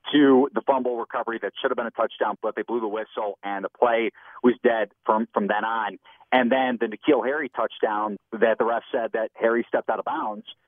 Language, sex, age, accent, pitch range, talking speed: English, male, 40-59, American, 115-150 Hz, 225 wpm